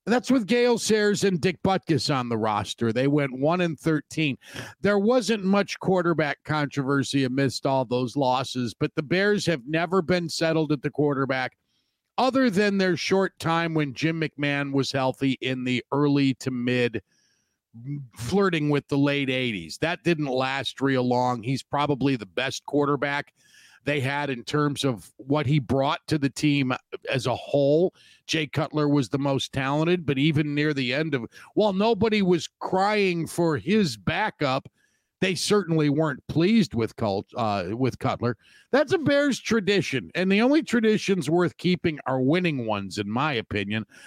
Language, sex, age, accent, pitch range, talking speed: English, male, 50-69, American, 130-185 Hz, 160 wpm